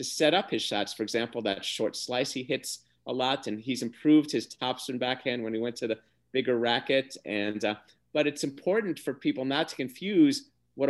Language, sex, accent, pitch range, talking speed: English, male, American, 105-150 Hz, 210 wpm